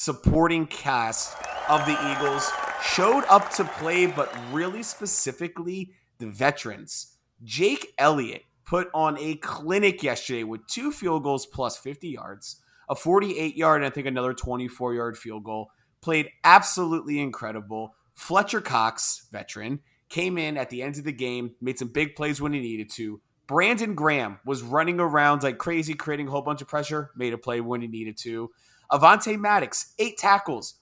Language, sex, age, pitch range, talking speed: English, male, 30-49, 125-170 Hz, 165 wpm